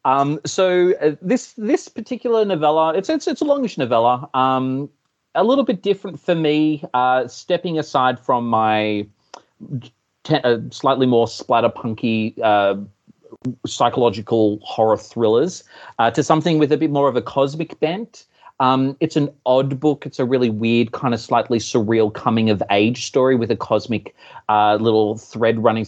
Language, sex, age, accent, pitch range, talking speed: English, male, 30-49, Australian, 105-150 Hz, 160 wpm